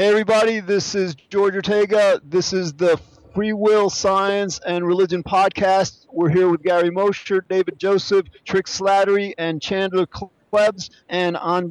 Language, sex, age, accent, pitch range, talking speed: English, male, 40-59, American, 170-195 Hz, 150 wpm